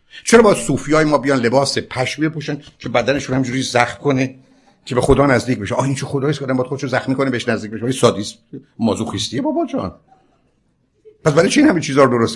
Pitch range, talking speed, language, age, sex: 120-155 Hz, 210 wpm, Persian, 60-79, male